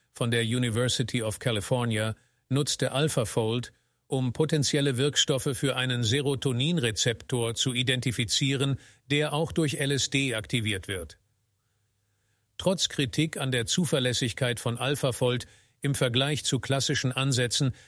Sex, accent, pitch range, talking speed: male, German, 120-145 Hz, 110 wpm